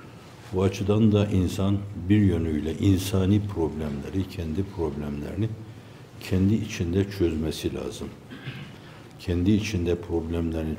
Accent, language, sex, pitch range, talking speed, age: native, Turkish, male, 85-105 Hz, 95 wpm, 60-79